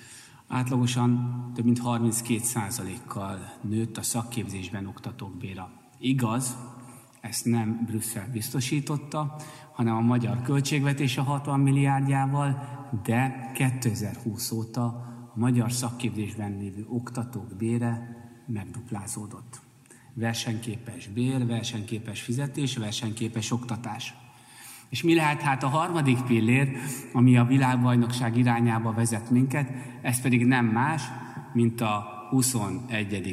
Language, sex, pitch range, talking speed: Hungarian, male, 115-135 Hz, 105 wpm